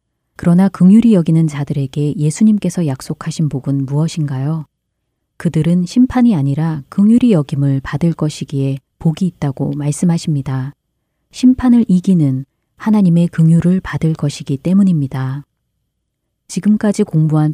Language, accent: Korean, native